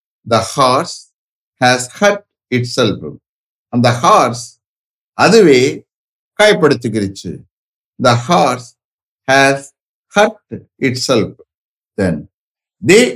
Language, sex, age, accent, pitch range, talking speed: English, male, 60-79, Indian, 110-150 Hz, 80 wpm